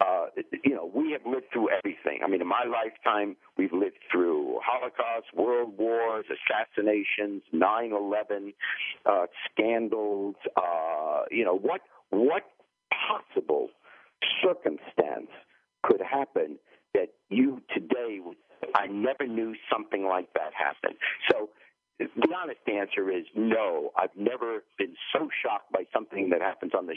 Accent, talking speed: American, 135 wpm